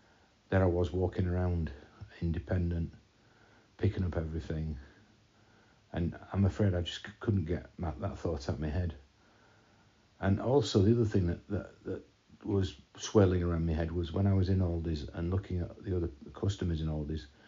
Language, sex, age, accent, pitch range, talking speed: English, male, 50-69, British, 85-105 Hz, 175 wpm